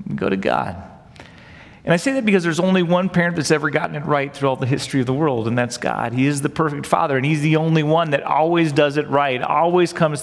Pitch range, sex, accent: 125-170 Hz, male, American